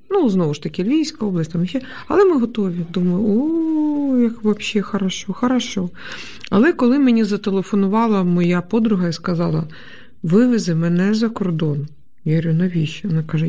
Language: Ukrainian